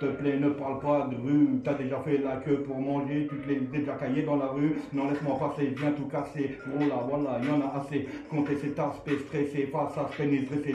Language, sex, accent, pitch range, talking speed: French, male, French, 140-155 Hz, 250 wpm